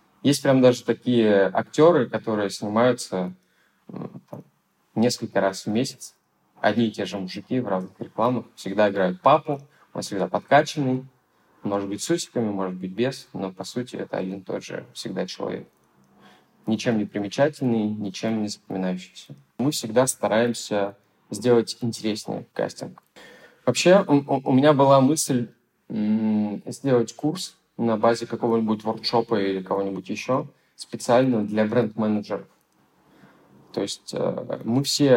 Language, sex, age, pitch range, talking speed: Russian, male, 20-39, 100-125 Hz, 130 wpm